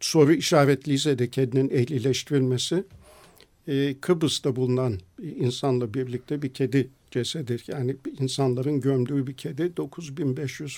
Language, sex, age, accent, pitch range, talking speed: Turkish, male, 50-69, native, 130-155 Hz, 95 wpm